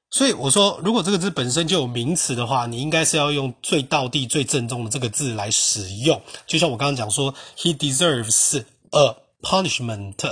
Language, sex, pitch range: Chinese, male, 125-155 Hz